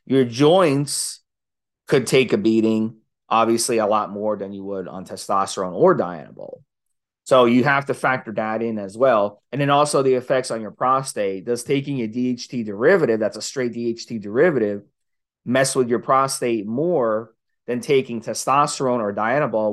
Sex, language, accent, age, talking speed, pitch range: male, English, American, 30-49, 165 wpm, 110-150 Hz